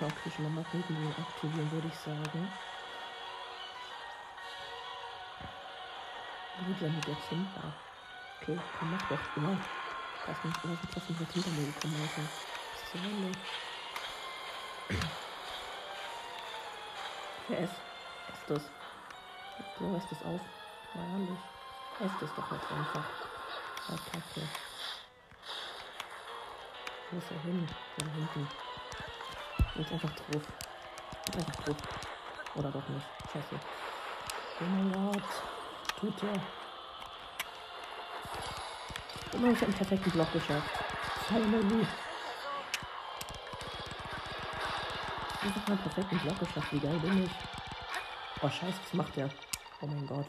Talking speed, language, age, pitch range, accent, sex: 100 wpm, German, 60-79, 155-195 Hz, German, male